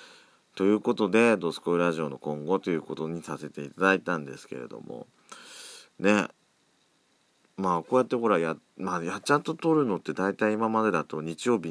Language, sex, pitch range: Japanese, male, 80-110 Hz